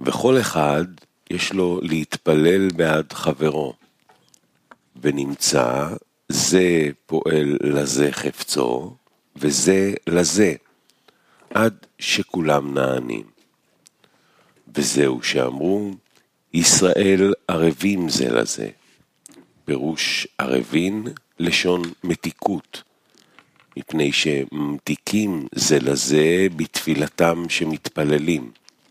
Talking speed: 70 wpm